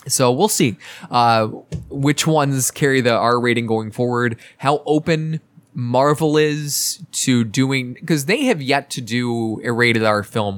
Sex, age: male, 20-39